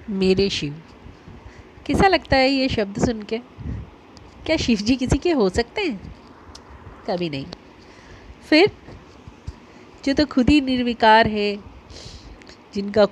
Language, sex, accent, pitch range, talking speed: Hindi, female, native, 195-240 Hz, 125 wpm